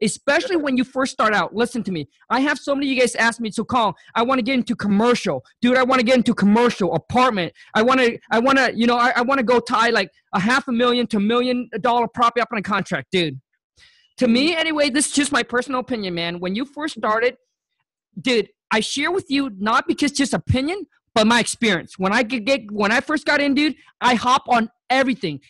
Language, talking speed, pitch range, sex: English, 235 wpm, 210-265 Hz, male